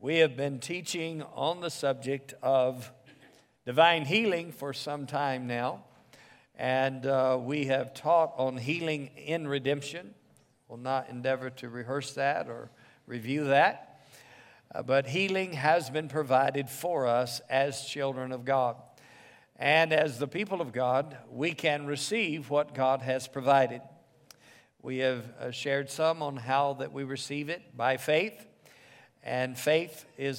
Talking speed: 145 wpm